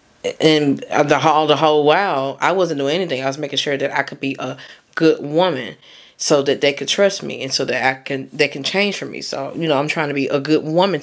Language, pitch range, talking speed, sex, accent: English, 140-160 Hz, 255 wpm, female, American